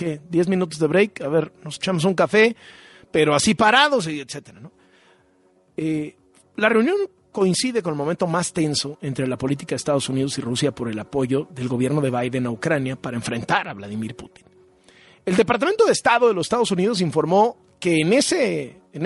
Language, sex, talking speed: Spanish, male, 185 wpm